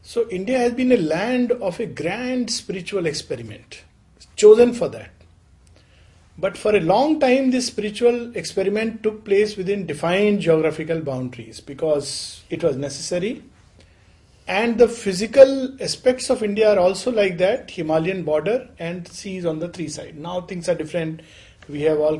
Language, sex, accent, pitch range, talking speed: English, male, Indian, 150-215 Hz, 155 wpm